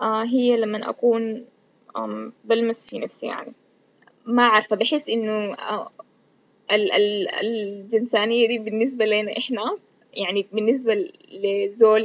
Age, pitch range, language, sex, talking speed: 20-39, 215-250 Hz, Arabic, female, 95 wpm